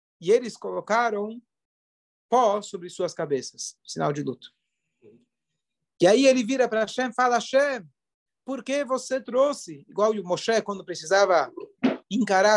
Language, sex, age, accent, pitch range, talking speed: Portuguese, male, 40-59, Brazilian, 190-260 Hz, 135 wpm